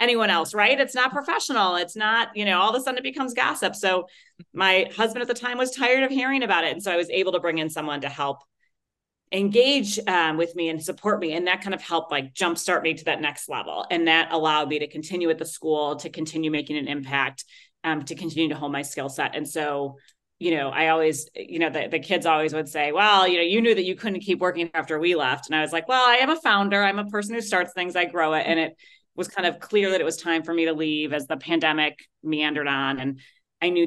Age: 30-49